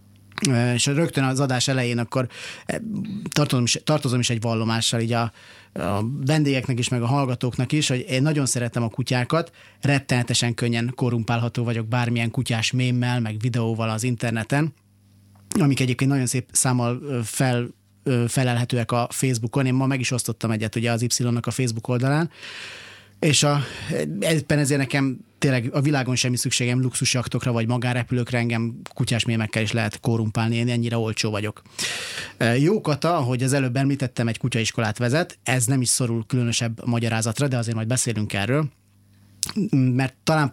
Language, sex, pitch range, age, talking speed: Hungarian, male, 115-135 Hz, 30-49, 145 wpm